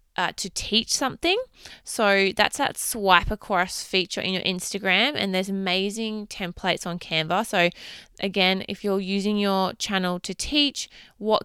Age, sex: 20-39, female